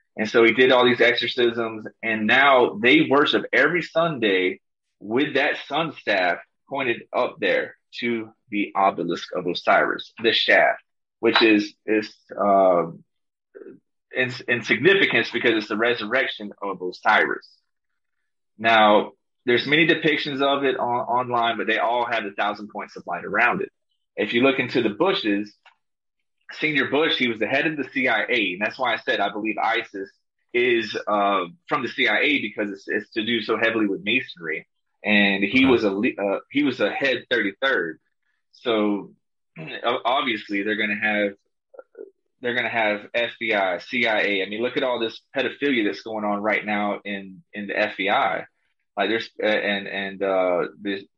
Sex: male